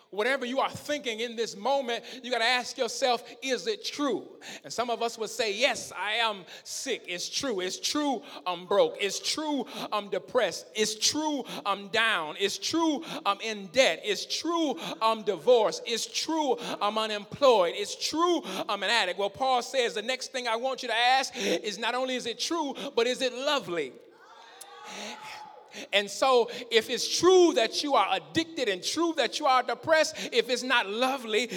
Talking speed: 185 wpm